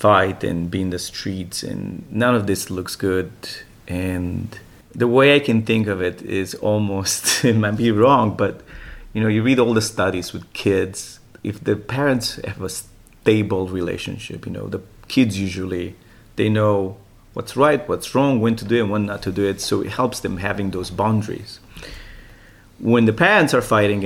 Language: English